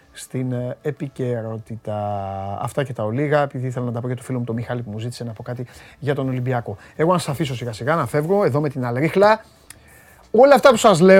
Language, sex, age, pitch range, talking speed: Greek, male, 30-49, 130-190 Hz, 145 wpm